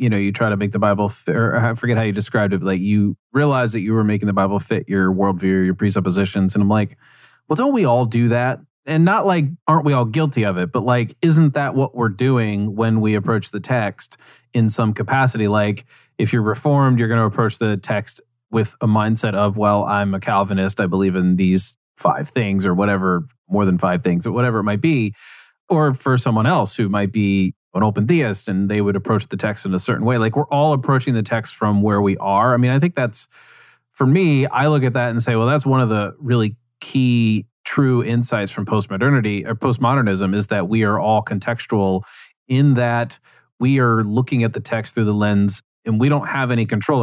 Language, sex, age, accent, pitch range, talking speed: English, male, 30-49, American, 105-125 Hz, 225 wpm